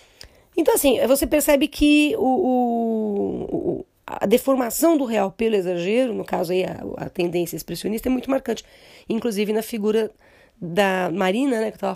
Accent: Brazilian